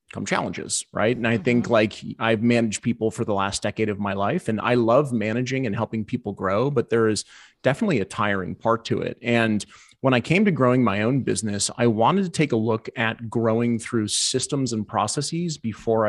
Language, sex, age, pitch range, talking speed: English, male, 30-49, 110-130 Hz, 210 wpm